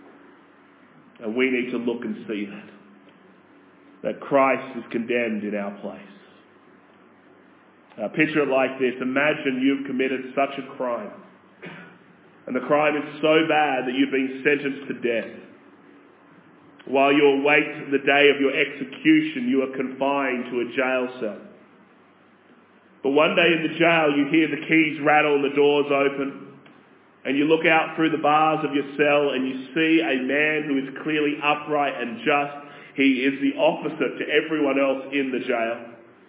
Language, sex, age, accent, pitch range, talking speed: English, male, 30-49, Australian, 130-150 Hz, 160 wpm